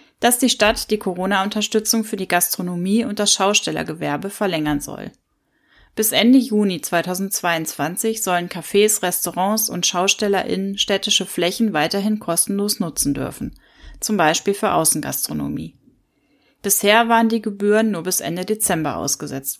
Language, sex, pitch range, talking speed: German, female, 180-225 Hz, 125 wpm